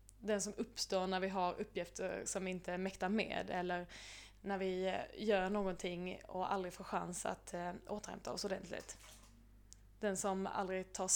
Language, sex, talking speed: Swedish, female, 155 wpm